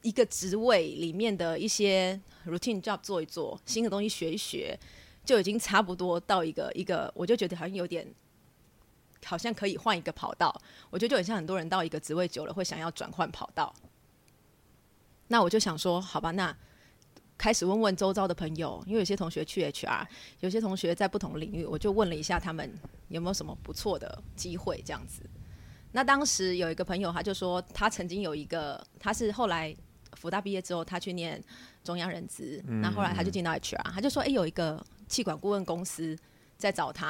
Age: 20-39